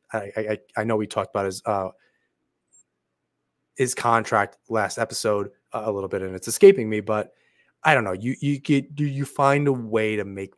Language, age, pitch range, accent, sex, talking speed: English, 30-49, 100-120 Hz, American, male, 195 wpm